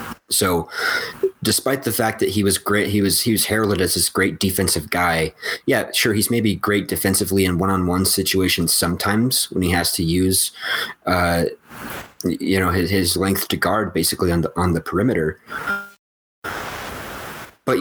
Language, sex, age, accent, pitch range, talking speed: English, male, 30-49, American, 90-105 Hz, 160 wpm